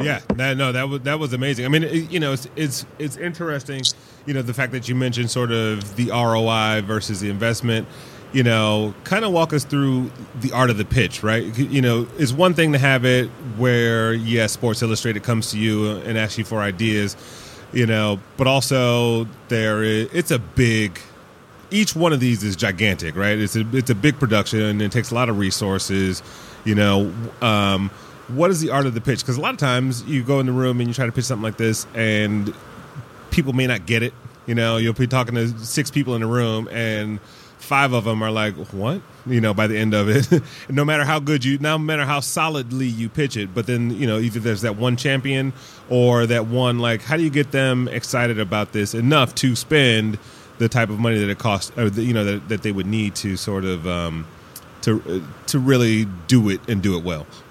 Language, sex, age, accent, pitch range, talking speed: English, male, 30-49, American, 110-135 Hz, 225 wpm